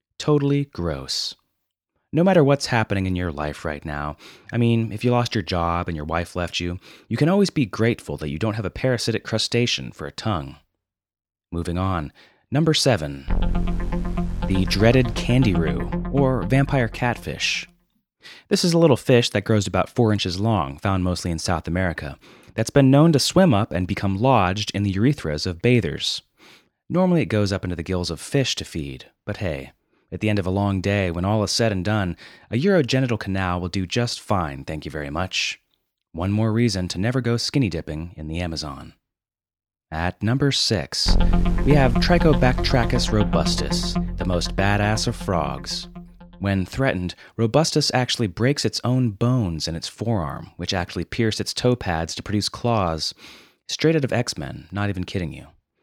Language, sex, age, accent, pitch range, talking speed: English, male, 30-49, American, 85-120 Hz, 180 wpm